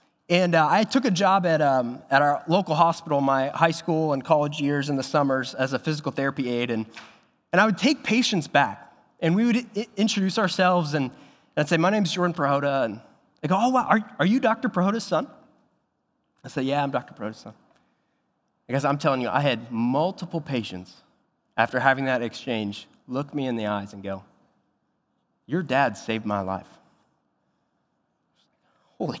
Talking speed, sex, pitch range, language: 185 wpm, male, 140-225 Hz, English